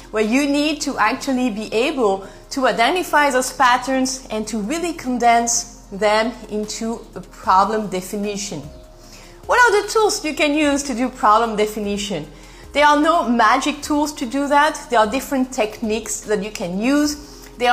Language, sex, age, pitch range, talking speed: English, female, 30-49, 215-280 Hz, 165 wpm